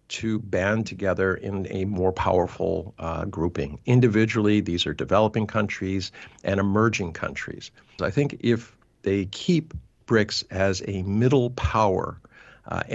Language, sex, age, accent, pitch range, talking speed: English, male, 50-69, American, 95-115 Hz, 130 wpm